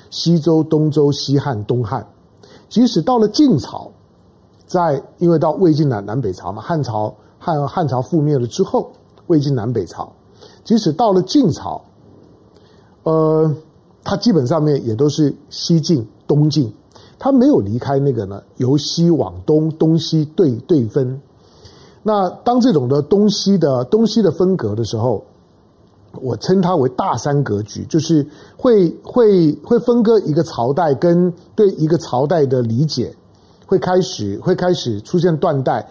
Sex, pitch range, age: male, 115-180 Hz, 50-69